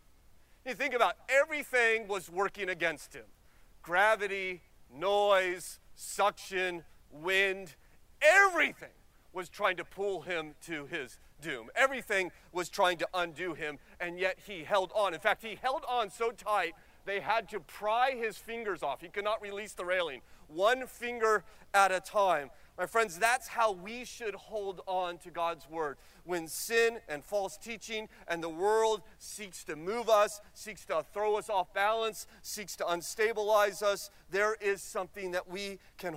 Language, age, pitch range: English, 40-59, 175-220 Hz